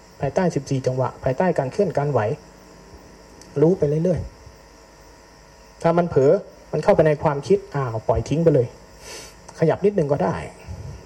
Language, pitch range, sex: Thai, 130-170 Hz, male